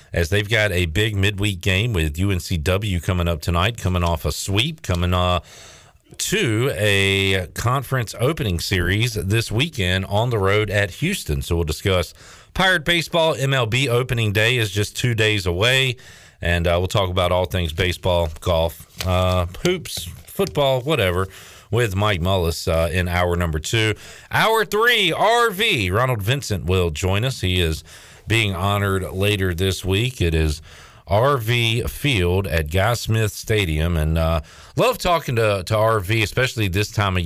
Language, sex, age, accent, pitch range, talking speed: English, male, 40-59, American, 90-115 Hz, 160 wpm